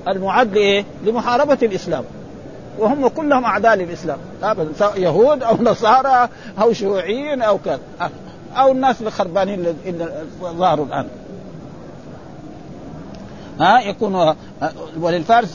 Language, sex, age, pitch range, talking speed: Arabic, male, 50-69, 165-215 Hz, 90 wpm